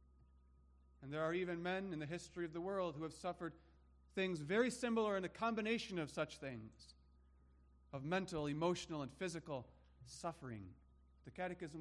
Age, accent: 40-59, American